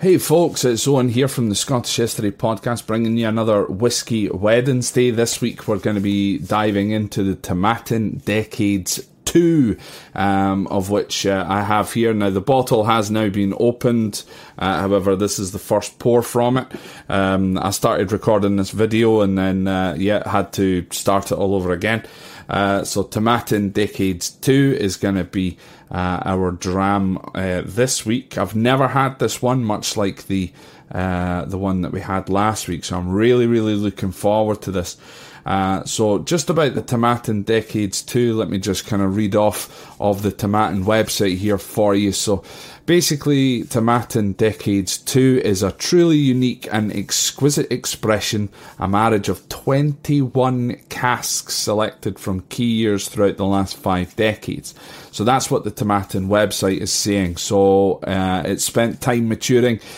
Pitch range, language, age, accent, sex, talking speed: 100-120 Hz, English, 30-49, British, male, 170 wpm